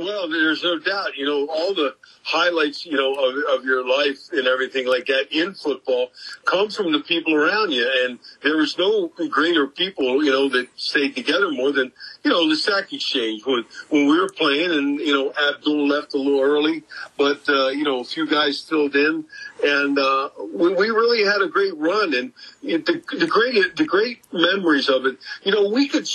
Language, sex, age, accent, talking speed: English, male, 50-69, American, 205 wpm